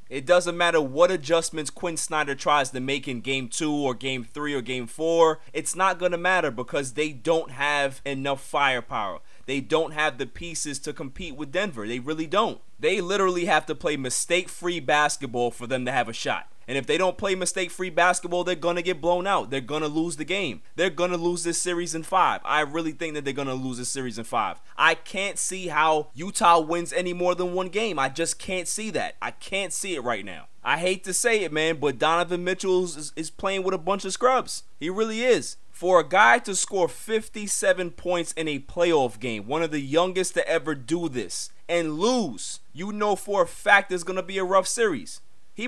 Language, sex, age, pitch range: English, male, 20-39, 145-185 Hz